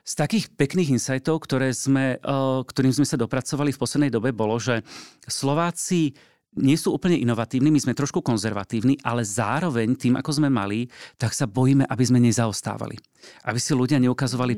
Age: 40-59